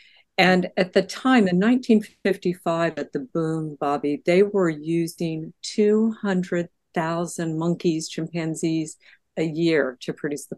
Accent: American